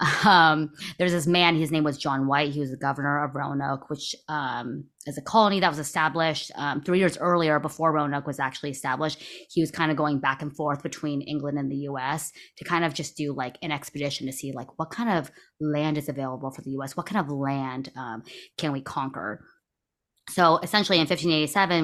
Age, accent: 20-39, American